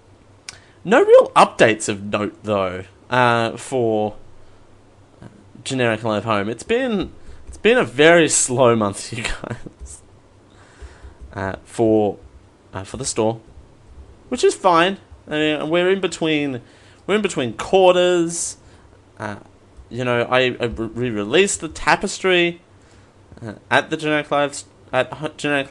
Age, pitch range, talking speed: 30-49, 100-125 Hz, 130 wpm